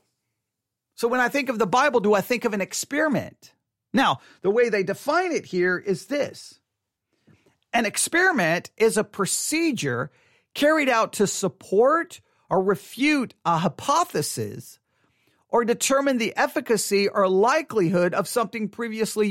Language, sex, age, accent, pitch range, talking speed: English, male, 40-59, American, 195-250 Hz, 135 wpm